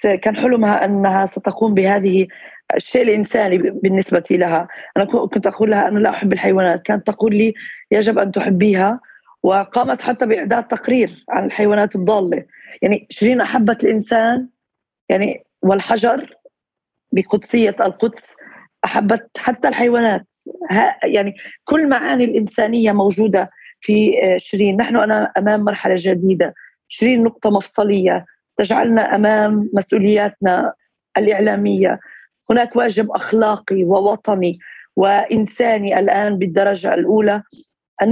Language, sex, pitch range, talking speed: Arabic, female, 195-225 Hz, 110 wpm